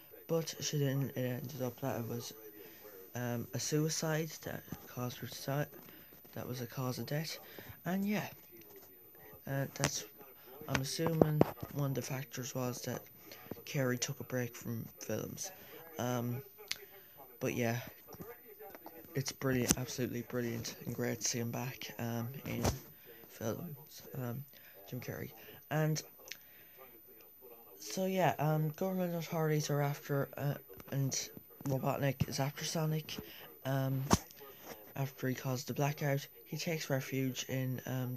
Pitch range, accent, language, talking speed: 125-150 Hz, British, English, 130 wpm